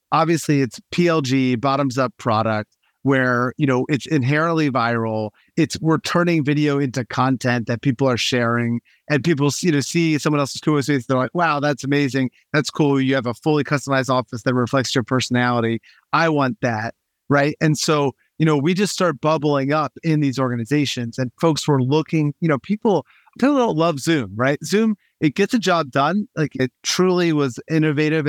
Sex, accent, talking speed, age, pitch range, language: male, American, 185 wpm, 30-49, 130-160 Hz, English